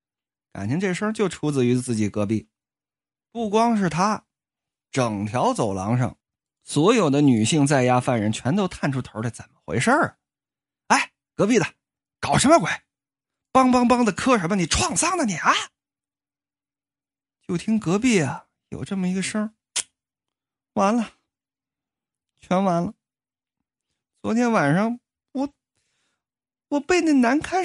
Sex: male